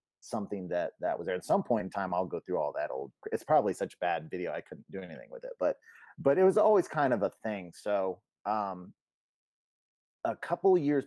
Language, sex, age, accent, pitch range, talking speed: English, male, 30-49, American, 95-125 Hz, 235 wpm